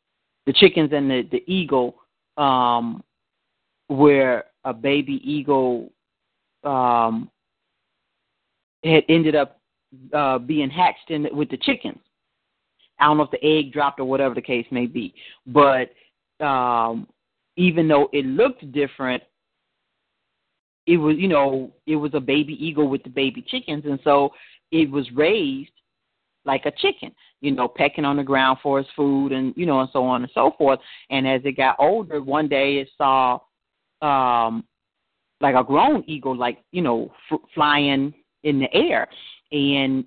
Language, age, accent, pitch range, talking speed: English, 40-59, American, 130-150 Hz, 155 wpm